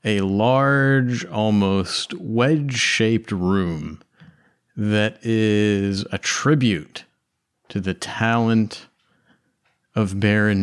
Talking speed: 80 wpm